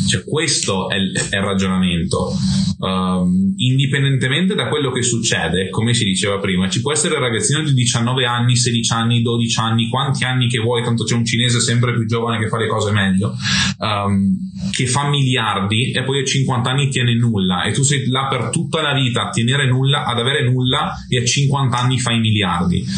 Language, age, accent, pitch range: Italian, 20-39, native, 100-125 Hz